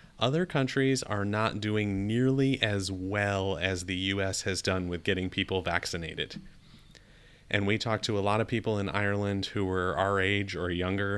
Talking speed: 175 wpm